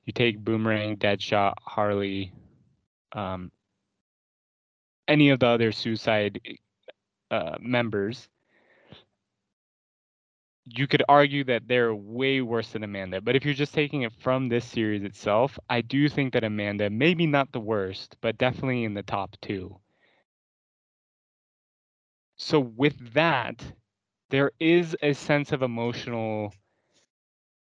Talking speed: 120 wpm